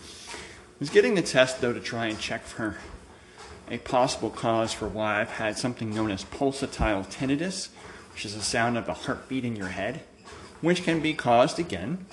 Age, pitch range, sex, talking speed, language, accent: 30-49, 105-140 Hz, male, 190 wpm, English, American